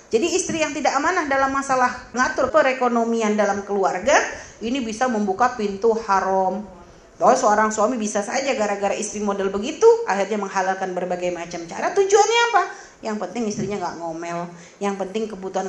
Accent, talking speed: native, 155 wpm